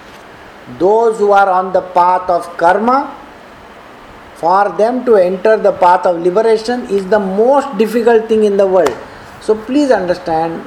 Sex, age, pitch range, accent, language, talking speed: male, 50-69, 190-240 Hz, Indian, English, 150 wpm